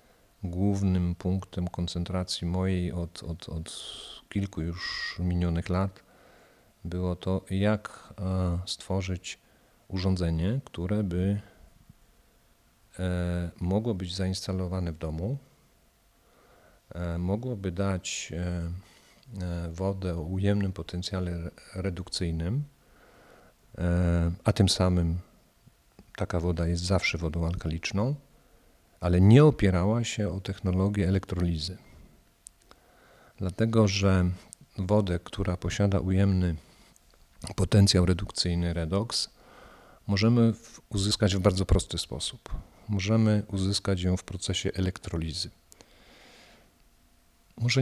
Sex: male